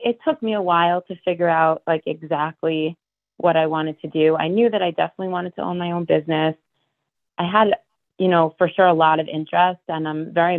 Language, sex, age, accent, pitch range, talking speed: English, female, 30-49, American, 160-195 Hz, 220 wpm